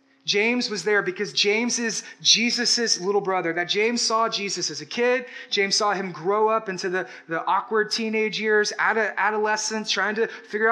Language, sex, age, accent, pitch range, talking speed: English, male, 20-39, American, 175-215 Hz, 175 wpm